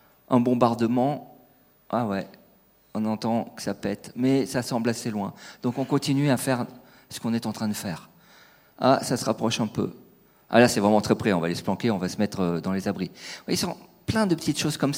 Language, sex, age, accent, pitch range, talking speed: French, male, 40-59, French, 115-170 Hz, 230 wpm